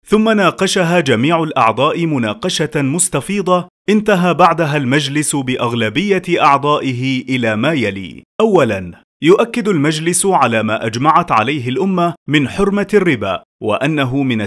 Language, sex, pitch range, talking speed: Arabic, male, 135-180 Hz, 110 wpm